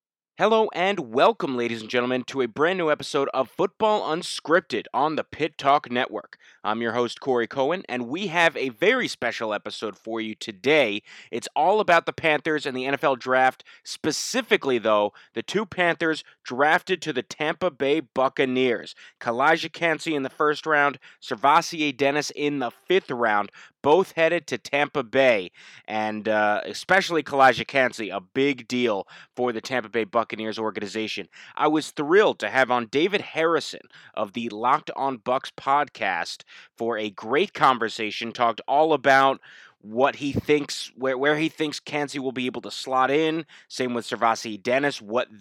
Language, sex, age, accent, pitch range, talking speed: English, male, 30-49, American, 115-155 Hz, 165 wpm